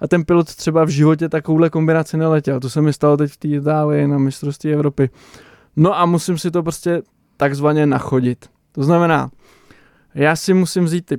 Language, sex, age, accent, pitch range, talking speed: Czech, male, 20-39, native, 140-160 Hz, 180 wpm